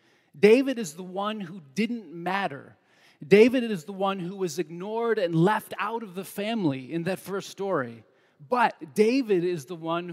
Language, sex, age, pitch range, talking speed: English, male, 30-49, 145-190 Hz, 170 wpm